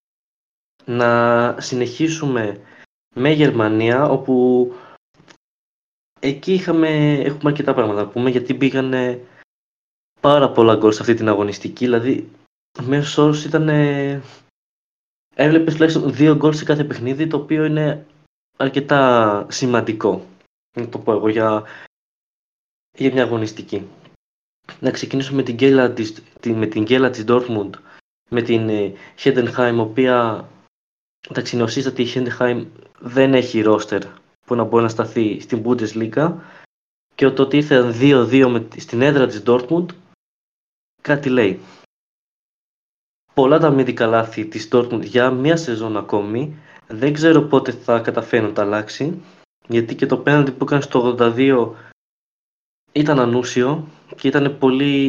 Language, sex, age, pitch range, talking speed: Greek, male, 20-39, 115-140 Hz, 125 wpm